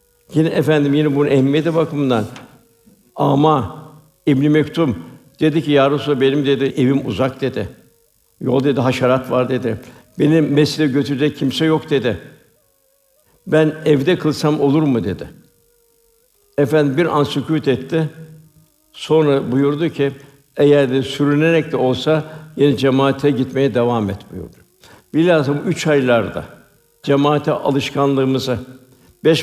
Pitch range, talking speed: 130-155 Hz, 120 wpm